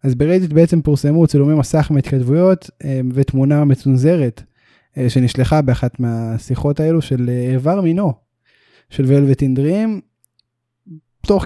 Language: Hebrew